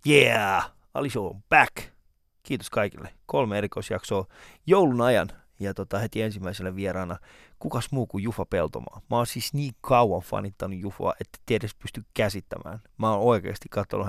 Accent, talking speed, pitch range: native, 145 wpm, 100-125 Hz